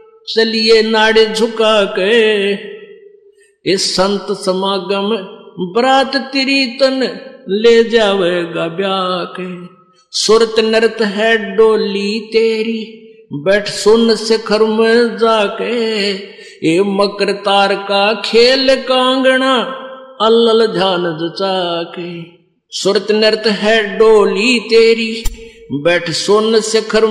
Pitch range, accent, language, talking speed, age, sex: 200-235 Hz, native, Hindi, 70 wpm, 50-69, male